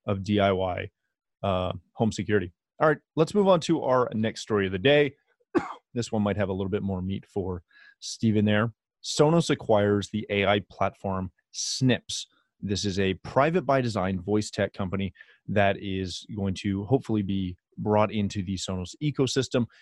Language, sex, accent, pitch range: English, male, American, 100-135 Hz